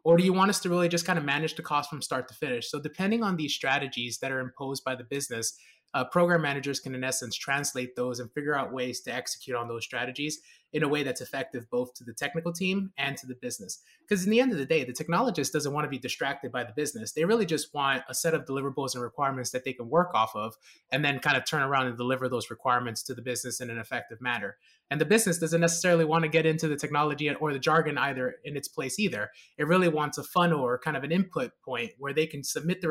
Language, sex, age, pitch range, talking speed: English, male, 20-39, 130-165 Hz, 265 wpm